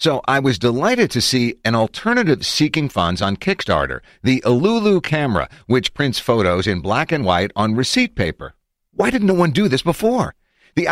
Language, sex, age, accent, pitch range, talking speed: English, male, 50-69, American, 95-150 Hz, 180 wpm